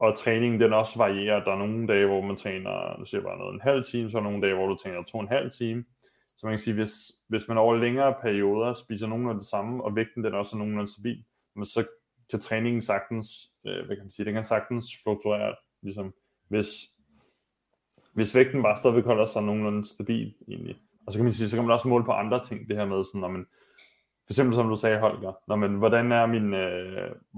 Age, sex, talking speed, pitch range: 20-39, male, 235 wpm, 100-115 Hz